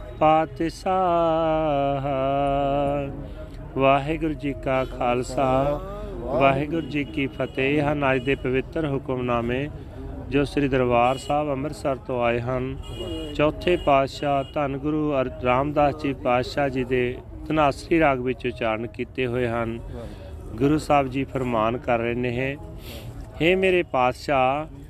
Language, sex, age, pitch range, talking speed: Punjabi, male, 40-59, 125-150 Hz, 115 wpm